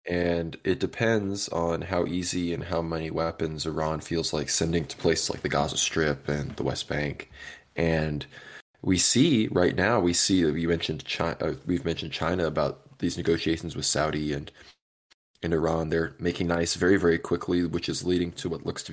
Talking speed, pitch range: 185 wpm, 80-90 Hz